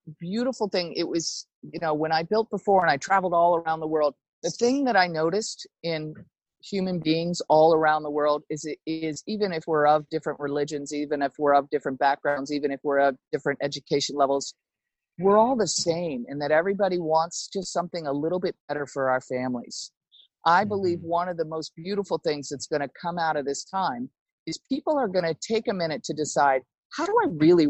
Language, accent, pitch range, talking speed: English, American, 150-205 Hz, 210 wpm